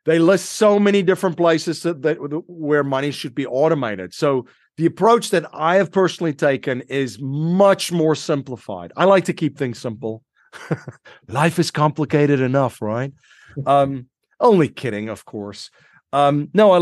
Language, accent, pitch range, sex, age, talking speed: English, American, 120-155 Hz, male, 40-59, 155 wpm